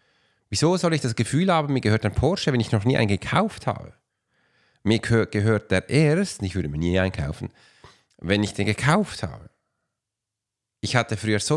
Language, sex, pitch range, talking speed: German, male, 100-130 Hz, 180 wpm